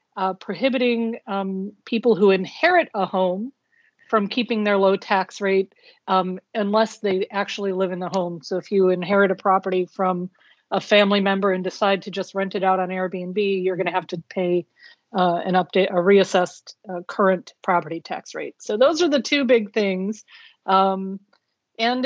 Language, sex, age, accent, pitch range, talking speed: English, female, 40-59, American, 195-225 Hz, 180 wpm